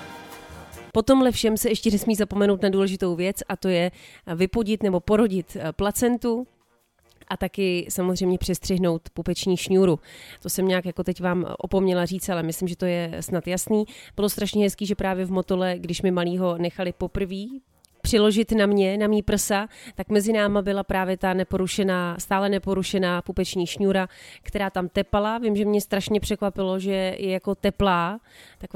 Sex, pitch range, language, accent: female, 180-205 Hz, Czech, native